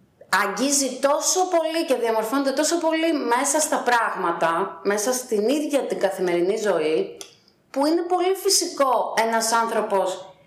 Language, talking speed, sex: Greek, 125 wpm, female